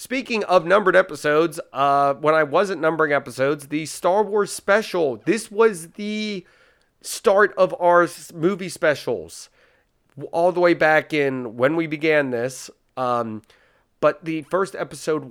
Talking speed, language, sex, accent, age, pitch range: 140 wpm, English, male, American, 30-49, 120-180 Hz